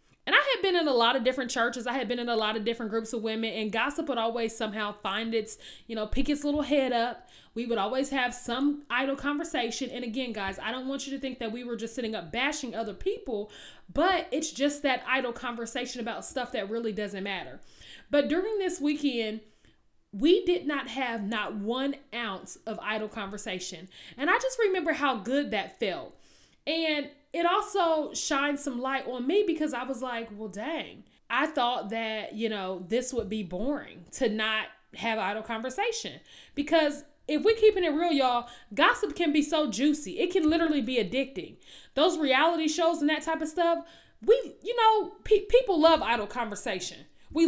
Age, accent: 30-49, American